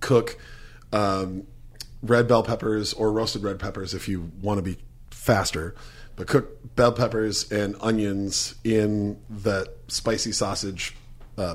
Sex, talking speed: male, 135 wpm